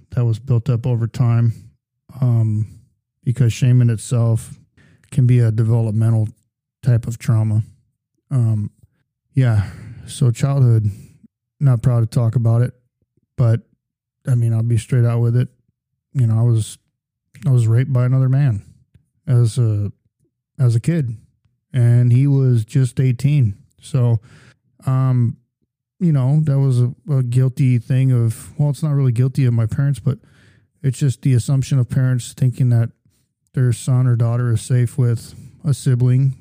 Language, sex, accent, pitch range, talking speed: English, male, American, 120-135 Hz, 155 wpm